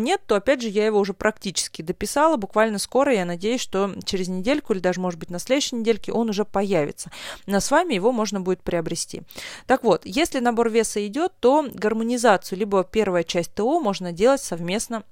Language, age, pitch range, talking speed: Russian, 30-49, 190-245 Hz, 190 wpm